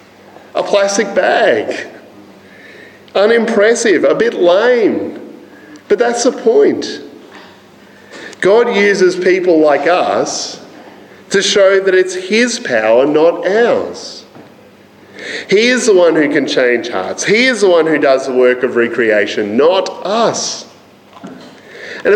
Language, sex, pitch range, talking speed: English, male, 155-240 Hz, 120 wpm